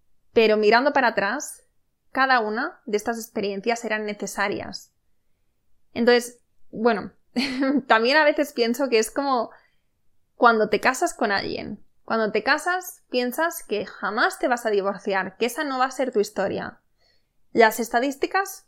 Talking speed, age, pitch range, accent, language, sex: 150 wpm, 20-39, 210-265 Hz, Spanish, Spanish, female